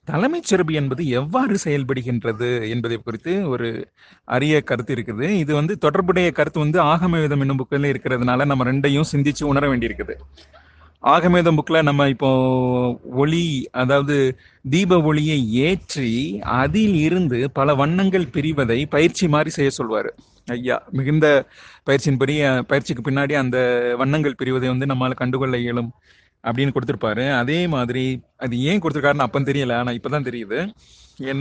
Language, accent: Tamil, native